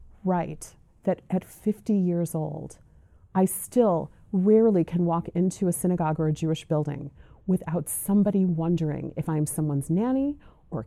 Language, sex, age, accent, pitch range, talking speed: English, female, 30-49, American, 155-190 Hz, 145 wpm